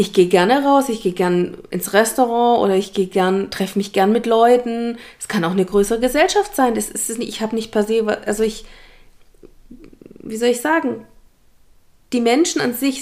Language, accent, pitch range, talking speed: German, German, 210-270 Hz, 195 wpm